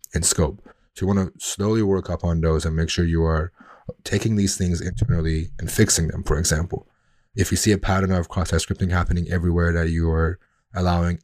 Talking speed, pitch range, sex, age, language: 210 wpm, 85-100 Hz, male, 20-39, English